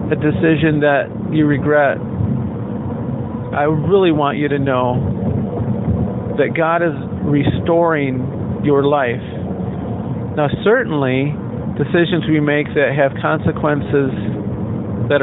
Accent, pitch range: American, 115-150 Hz